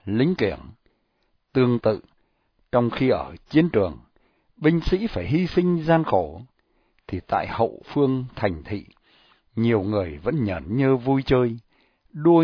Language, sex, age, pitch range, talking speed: Vietnamese, male, 60-79, 105-165 Hz, 145 wpm